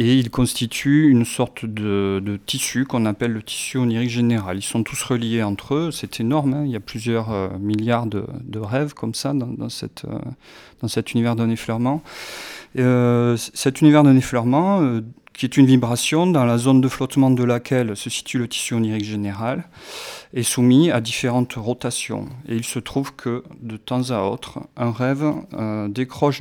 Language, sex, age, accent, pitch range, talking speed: French, male, 40-59, French, 110-135 Hz, 195 wpm